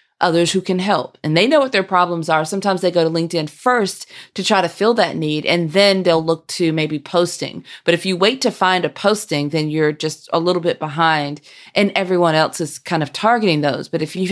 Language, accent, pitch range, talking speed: English, American, 155-200 Hz, 235 wpm